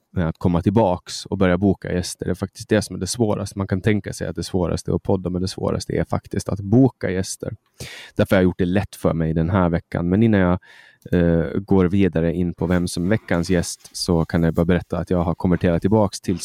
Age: 20-39